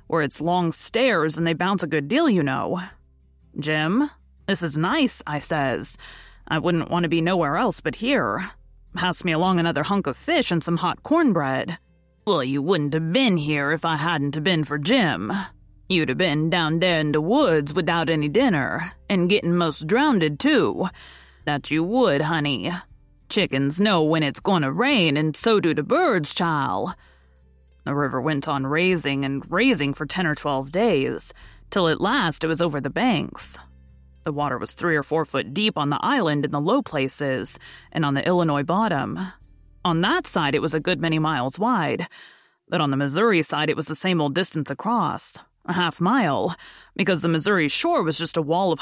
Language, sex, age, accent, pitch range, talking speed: English, female, 30-49, American, 145-180 Hz, 190 wpm